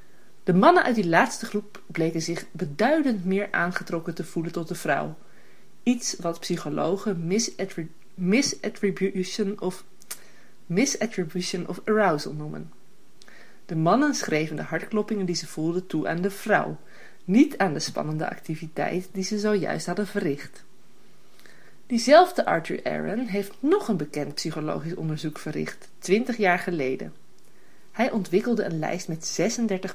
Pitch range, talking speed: 165-215 Hz, 135 wpm